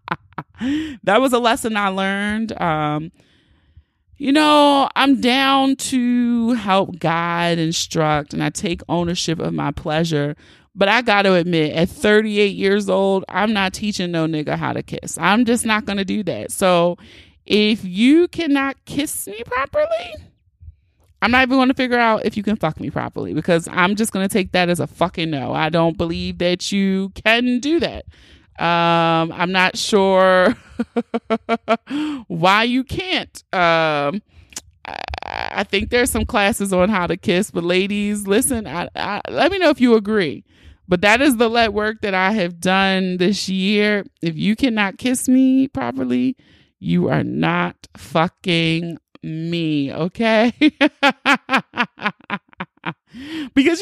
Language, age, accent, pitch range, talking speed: English, 30-49, American, 170-245 Hz, 155 wpm